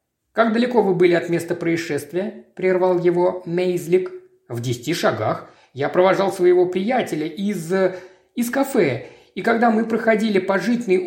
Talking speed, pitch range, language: 145 wpm, 165-210 Hz, Russian